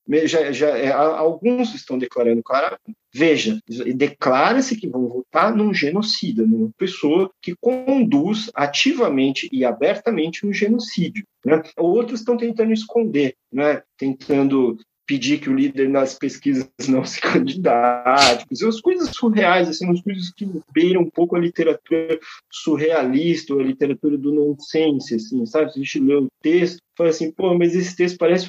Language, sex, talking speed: Portuguese, male, 155 wpm